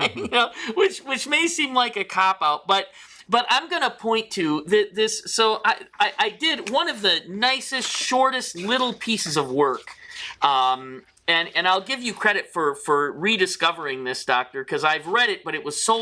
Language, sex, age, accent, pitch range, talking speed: English, male, 40-59, American, 150-230 Hz, 180 wpm